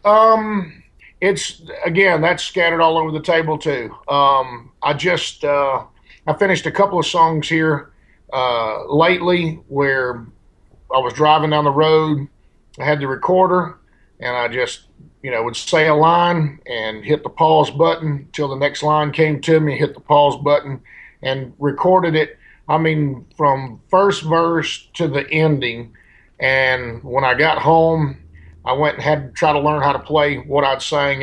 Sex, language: male, English